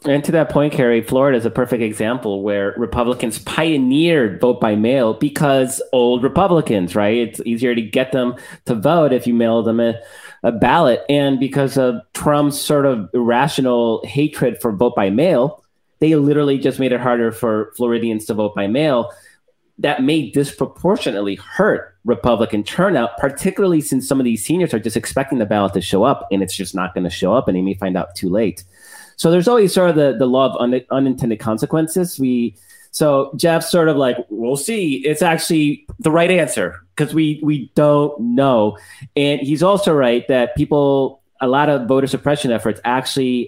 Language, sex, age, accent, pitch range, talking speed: English, male, 30-49, American, 115-150 Hz, 190 wpm